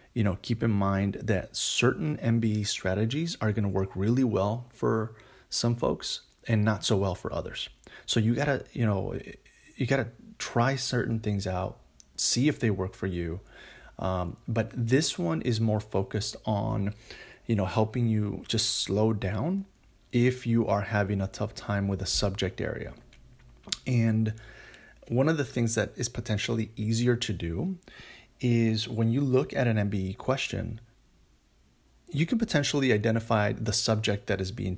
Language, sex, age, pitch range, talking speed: English, male, 30-49, 105-120 Hz, 165 wpm